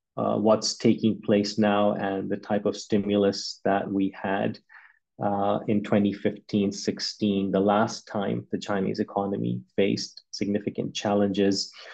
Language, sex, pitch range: English, male, 105-115 Hz